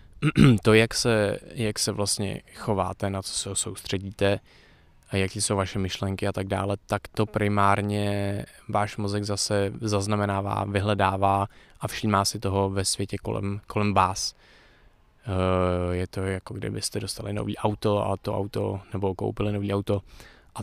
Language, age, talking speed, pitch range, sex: Czech, 20-39, 150 wpm, 95-105 Hz, male